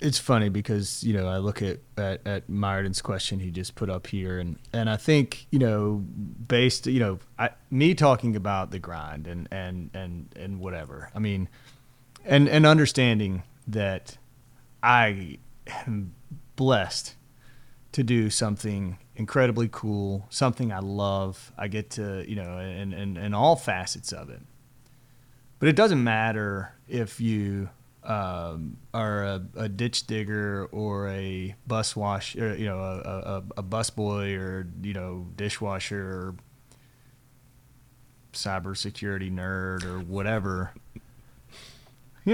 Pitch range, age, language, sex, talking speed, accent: 100-125 Hz, 30-49, English, male, 140 wpm, American